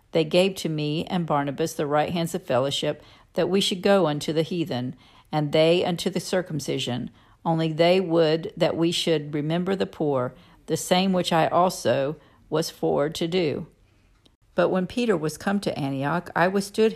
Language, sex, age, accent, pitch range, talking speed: English, female, 50-69, American, 145-180 Hz, 175 wpm